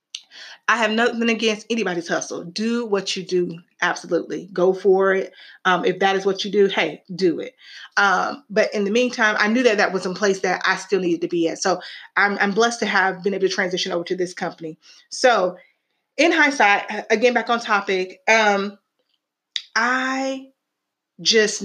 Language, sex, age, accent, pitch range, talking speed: English, female, 30-49, American, 190-235 Hz, 185 wpm